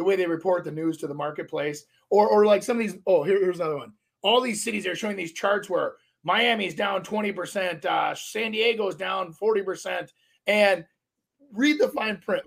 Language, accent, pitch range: English, American, 175-245 Hz